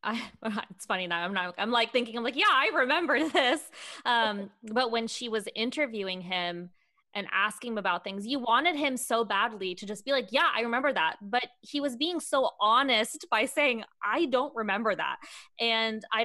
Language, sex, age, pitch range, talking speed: English, female, 20-39, 190-230 Hz, 195 wpm